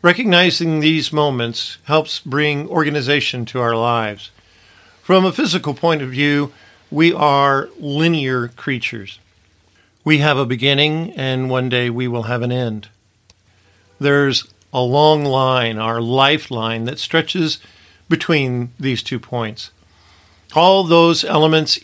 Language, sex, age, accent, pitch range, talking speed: English, male, 50-69, American, 110-155 Hz, 125 wpm